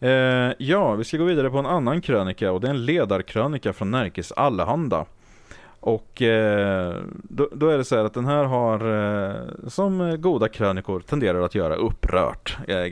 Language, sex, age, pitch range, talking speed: English, male, 30-49, 100-145 Hz, 180 wpm